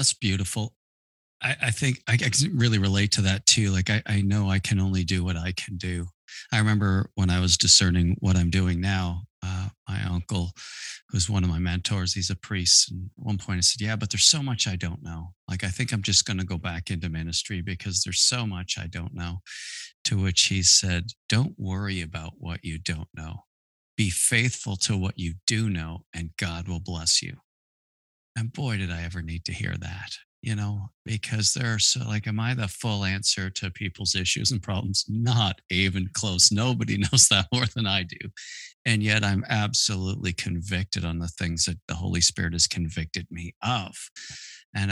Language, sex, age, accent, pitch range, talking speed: English, male, 40-59, American, 90-105 Hz, 205 wpm